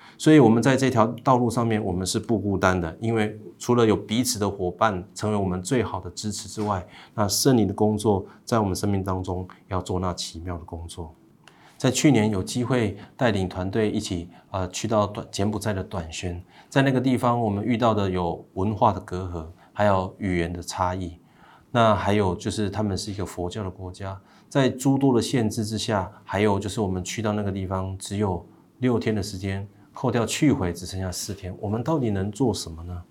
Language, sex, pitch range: Chinese, male, 90-115 Hz